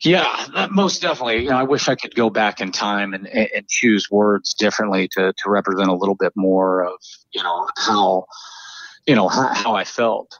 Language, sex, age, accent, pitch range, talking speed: English, male, 40-59, American, 100-115 Hz, 200 wpm